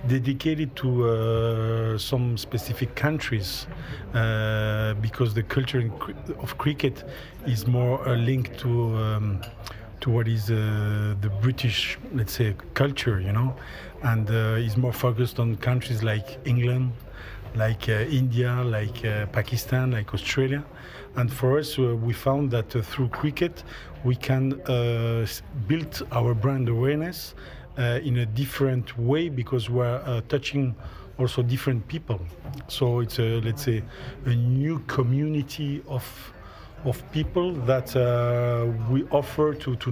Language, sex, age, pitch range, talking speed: English, male, 50-69, 115-135 Hz, 140 wpm